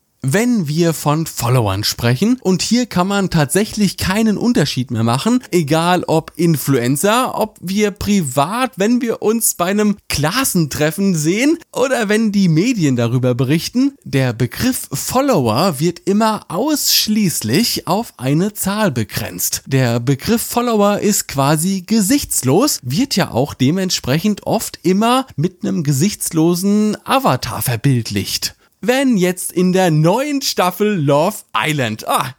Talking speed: 130 wpm